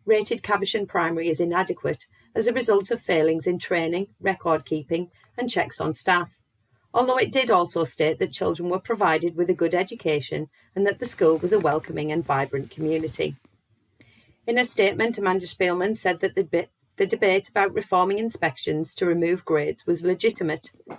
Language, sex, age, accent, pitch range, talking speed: English, female, 40-59, British, 155-215 Hz, 170 wpm